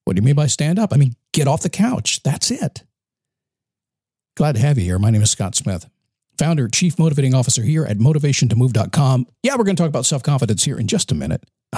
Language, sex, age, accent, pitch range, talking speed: English, male, 50-69, American, 120-155 Hz, 235 wpm